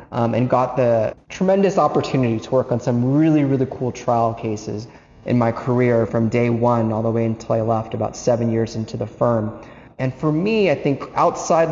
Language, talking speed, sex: English, 200 wpm, male